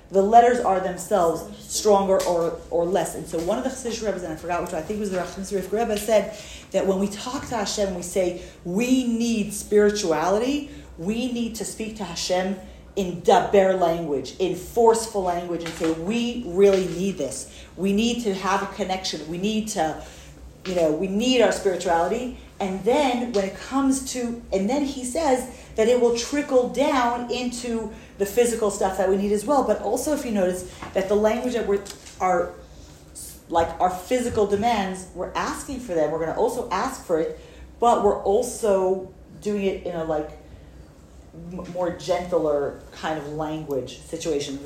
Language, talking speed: English, 180 wpm